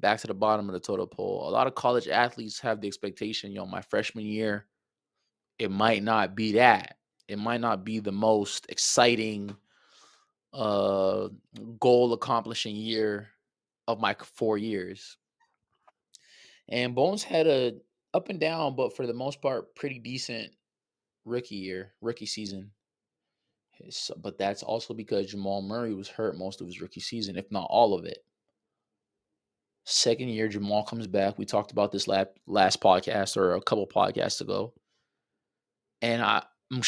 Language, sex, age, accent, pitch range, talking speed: English, male, 20-39, American, 100-115 Hz, 155 wpm